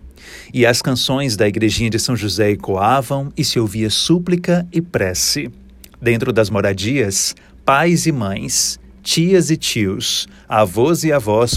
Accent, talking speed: Brazilian, 140 wpm